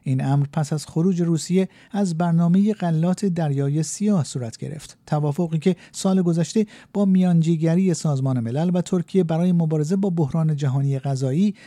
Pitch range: 145-190 Hz